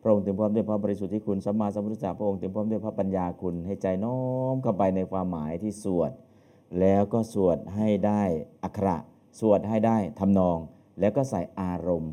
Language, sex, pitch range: Thai, male, 95-115 Hz